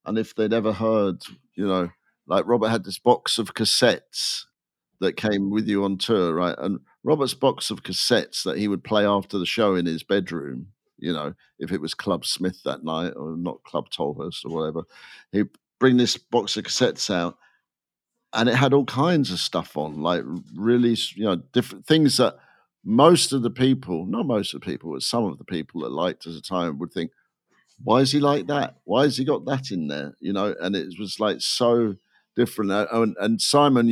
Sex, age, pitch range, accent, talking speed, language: male, 50-69, 90-125 Hz, British, 205 wpm, English